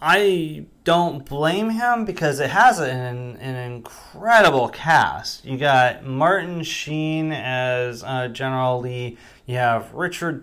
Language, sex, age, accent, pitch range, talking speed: English, male, 30-49, American, 125-170 Hz, 125 wpm